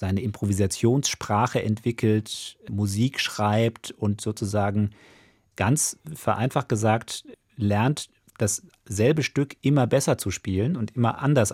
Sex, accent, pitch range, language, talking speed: male, German, 100-125 Hz, German, 105 wpm